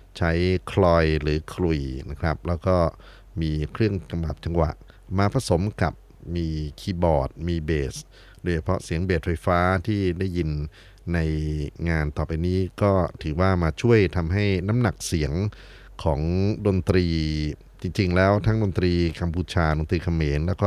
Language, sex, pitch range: Thai, male, 85-100 Hz